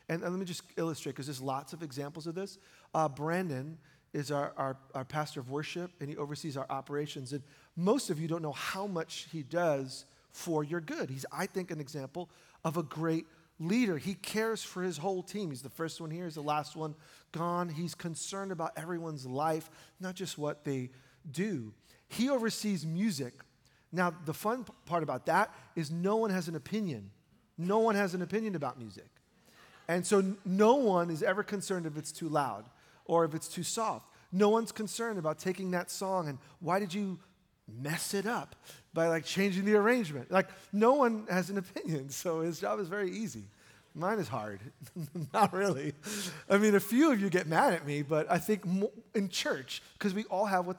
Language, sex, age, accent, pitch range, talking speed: English, male, 40-59, American, 150-200 Hz, 200 wpm